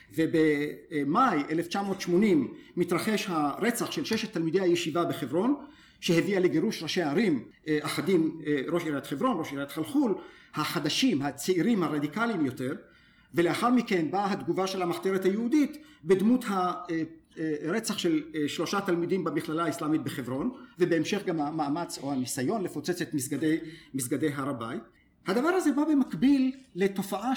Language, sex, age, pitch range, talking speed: Hebrew, male, 50-69, 155-235 Hz, 120 wpm